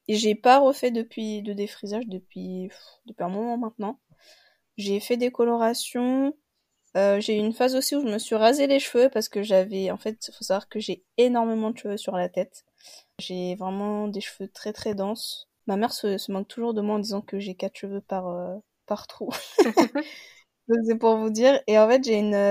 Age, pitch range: 20-39, 200-240 Hz